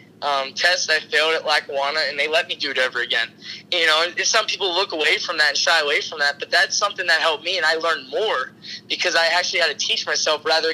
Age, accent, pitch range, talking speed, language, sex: 20-39, American, 135-170 Hz, 255 wpm, English, male